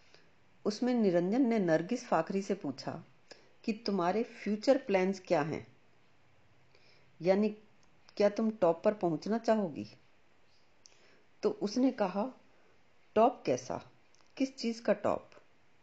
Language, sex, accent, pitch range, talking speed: Hindi, female, native, 170-220 Hz, 110 wpm